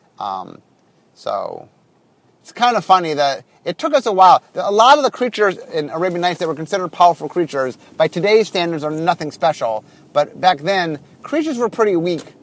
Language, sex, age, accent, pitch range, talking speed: English, male, 30-49, American, 150-200 Hz, 185 wpm